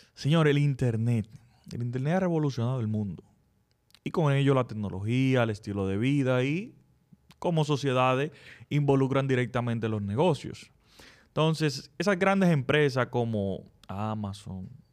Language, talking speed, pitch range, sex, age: Spanish, 125 wpm, 115-145 Hz, male, 30-49